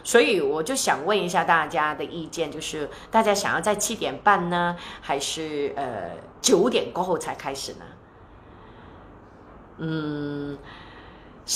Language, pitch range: Chinese, 150-210 Hz